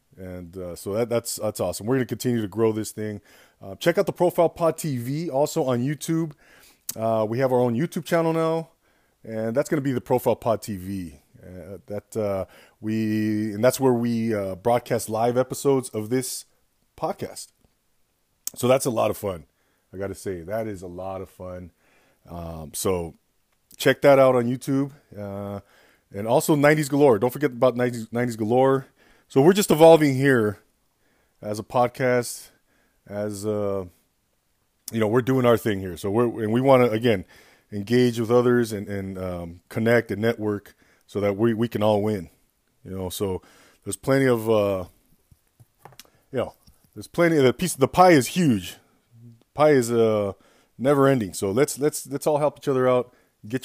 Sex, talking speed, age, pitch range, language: male, 185 wpm, 30-49, 105-130 Hz, English